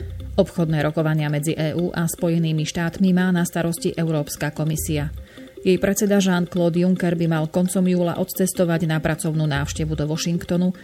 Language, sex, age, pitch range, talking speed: Slovak, female, 30-49, 155-180 Hz, 145 wpm